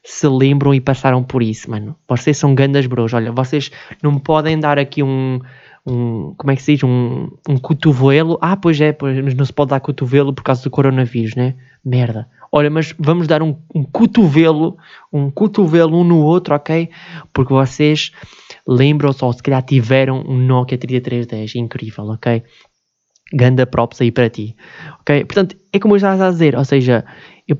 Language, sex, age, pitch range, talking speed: Portuguese, male, 20-39, 130-155 Hz, 180 wpm